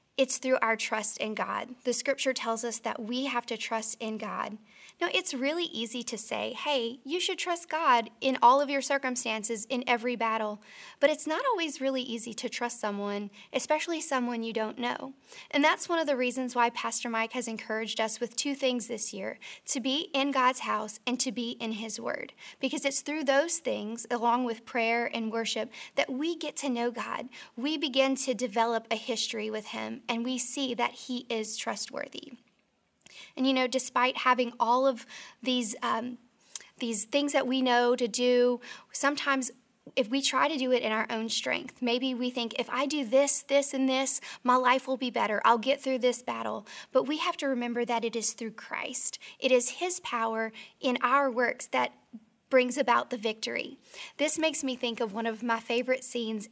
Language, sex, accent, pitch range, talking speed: English, female, American, 230-270 Hz, 200 wpm